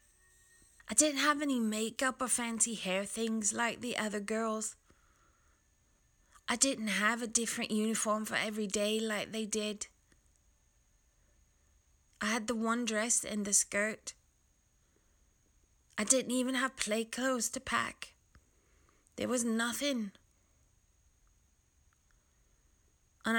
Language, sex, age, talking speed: English, female, 20-39, 115 wpm